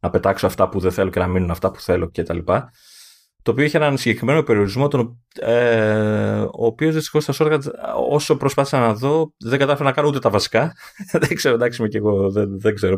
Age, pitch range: 20-39, 100-150 Hz